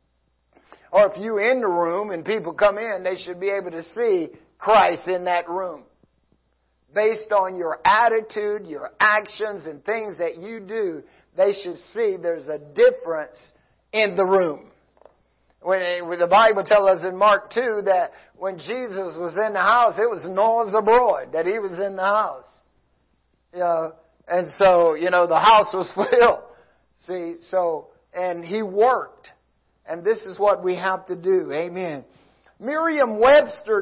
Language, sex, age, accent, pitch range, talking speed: English, male, 50-69, American, 175-235 Hz, 160 wpm